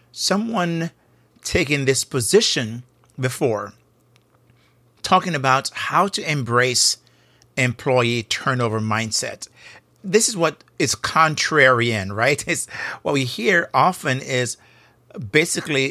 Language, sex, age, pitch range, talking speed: English, male, 50-69, 125-155 Hz, 95 wpm